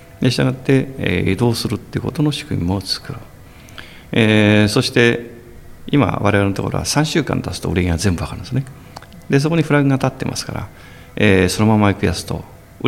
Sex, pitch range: male, 95-135 Hz